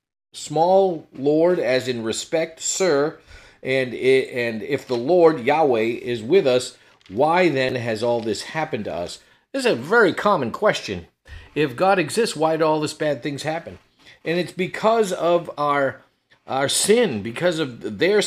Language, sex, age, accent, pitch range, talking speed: English, male, 50-69, American, 125-175 Hz, 165 wpm